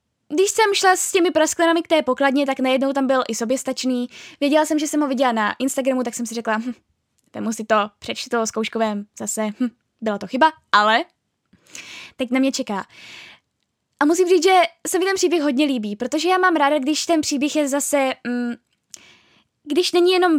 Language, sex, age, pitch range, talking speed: Czech, female, 10-29, 245-310 Hz, 195 wpm